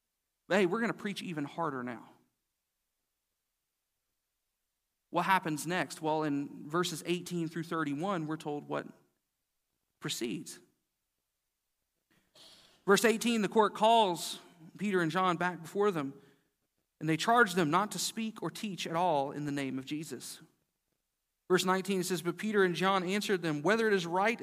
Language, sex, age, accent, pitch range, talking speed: English, male, 40-59, American, 160-225 Hz, 150 wpm